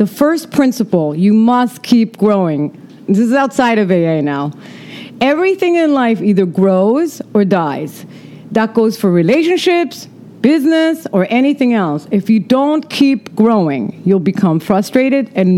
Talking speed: 145 wpm